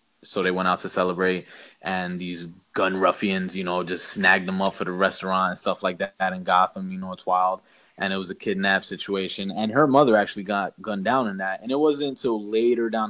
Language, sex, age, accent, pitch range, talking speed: English, male, 20-39, American, 95-115 Hz, 235 wpm